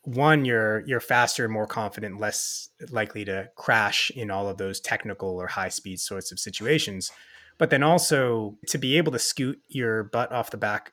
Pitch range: 105-135 Hz